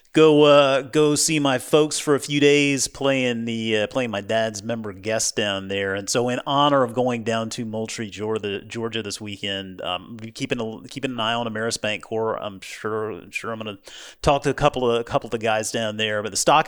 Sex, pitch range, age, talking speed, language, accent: male, 105-130 Hz, 30-49, 230 wpm, English, American